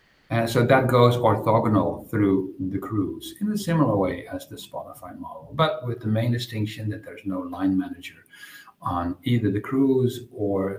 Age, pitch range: 50-69, 100-130 Hz